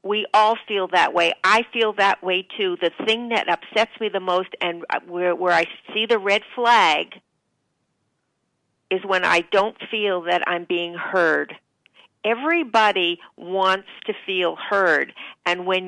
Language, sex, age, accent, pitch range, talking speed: English, female, 50-69, American, 175-220 Hz, 155 wpm